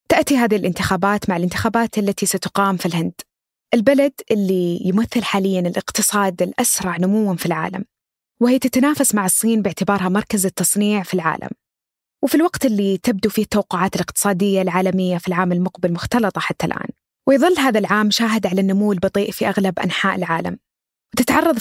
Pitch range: 185-225 Hz